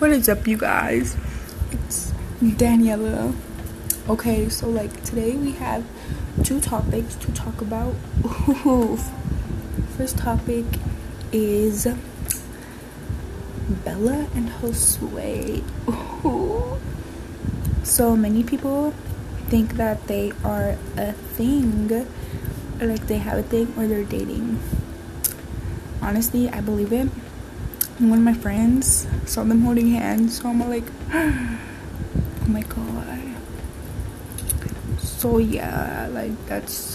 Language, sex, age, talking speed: English, female, 20-39, 100 wpm